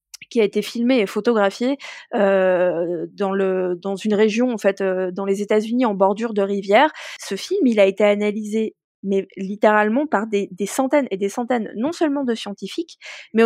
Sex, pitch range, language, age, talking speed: female, 200-260 Hz, French, 20-39, 185 wpm